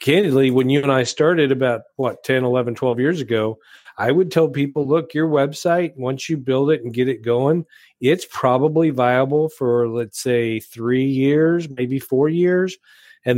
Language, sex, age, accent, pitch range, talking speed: English, male, 40-59, American, 120-155 Hz, 180 wpm